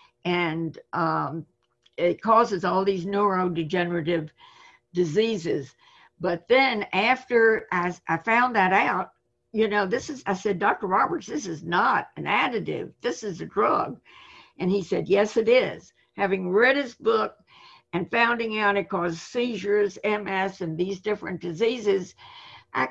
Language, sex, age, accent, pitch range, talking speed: English, female, 60-79, American, 185-235 Hz, 145 wpm